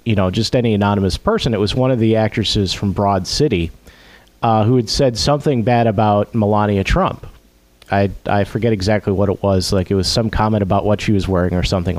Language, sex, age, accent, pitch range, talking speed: English, male, 40-59, American, 100-140 Hz, 215 wpm